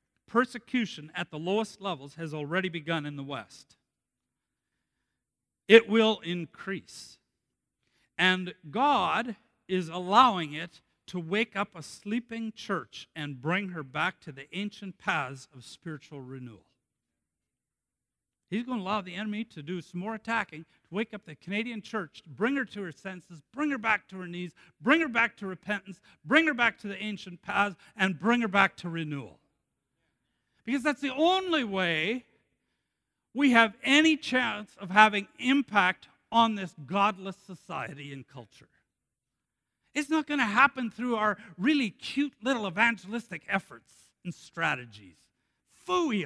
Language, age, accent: English, 50-69, American